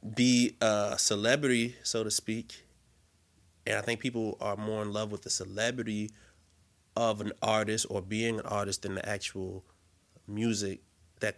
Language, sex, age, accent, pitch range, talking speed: English, male, 30-49, American, 95-110 Hz, 155 wpm